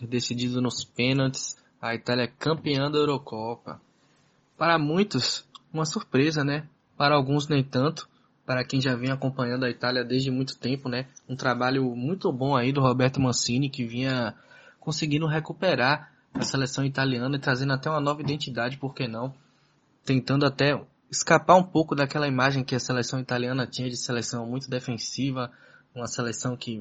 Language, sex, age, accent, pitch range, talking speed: Portuguese, male, 10-29, Brazilian, 125-140 Hz, 160 wpm